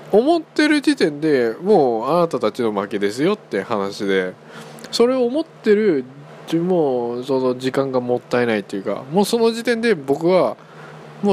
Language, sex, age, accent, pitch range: Japanese, male, 20-39, native, 90-145 Hz